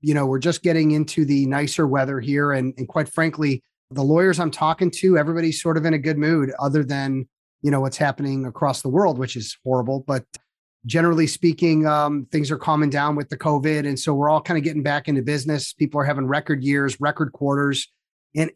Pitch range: 140-165 Hz